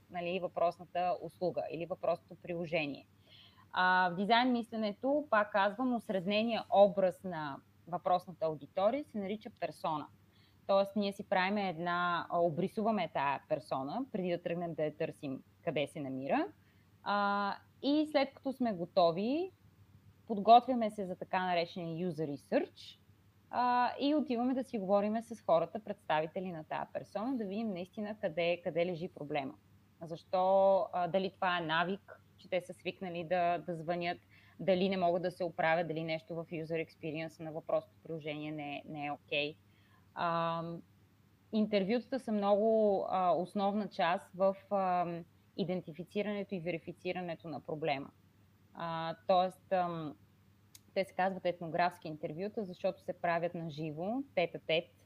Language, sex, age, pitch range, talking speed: Bulgarian, female, 20-39, 160-200 Hz, 135 wpm